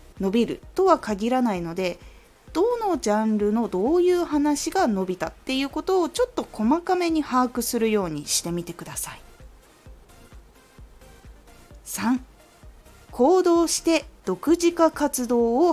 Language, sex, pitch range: Japanese, female, 200-335 Hz